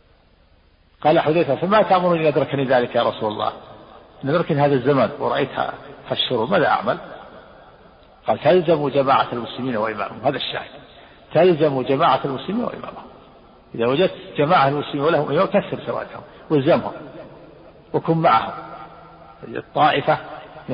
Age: 50-69